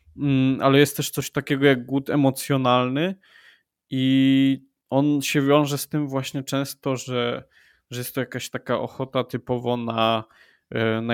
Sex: male